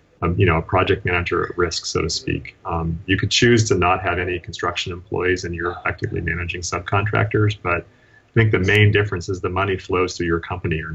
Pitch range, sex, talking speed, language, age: 85-105 Hz, male, 220 wpm, English, 30-49